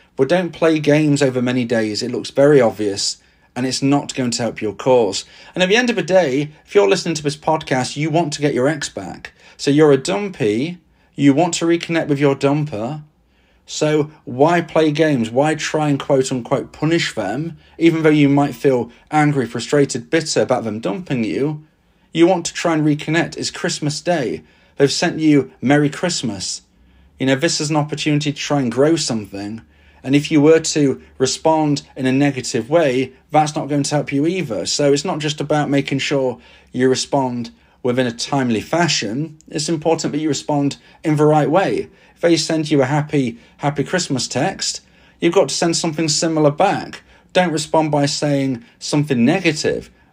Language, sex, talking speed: English, male, 190 wpm